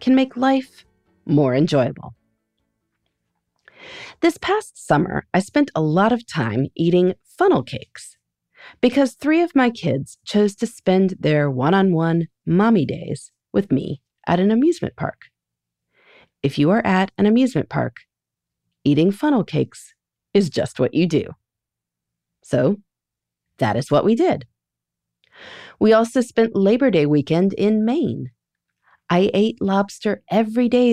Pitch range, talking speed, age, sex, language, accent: 140-230 Hz, 135 wpm, 30-49, female, English, American